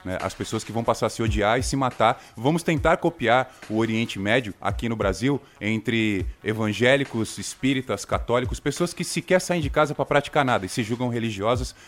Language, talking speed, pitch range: Portuguese, 185 wpm, 110-140 Hz